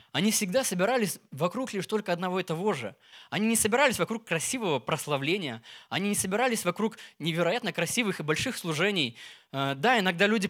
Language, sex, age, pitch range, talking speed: Russian, male, 20-39, 160-220 Hz, 160 wpm